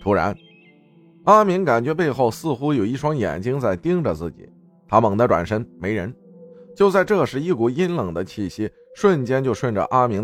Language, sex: Chinese, male